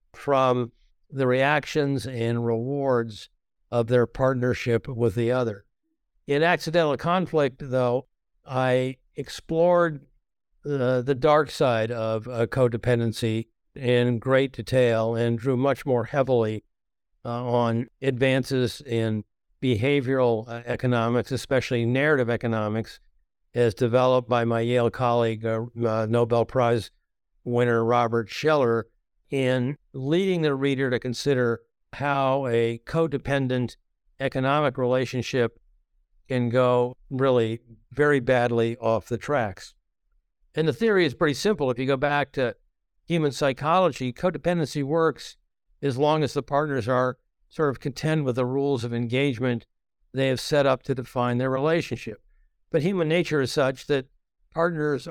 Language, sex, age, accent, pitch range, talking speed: English, male, 60-79, American, 120-140 Hz, 125 wpm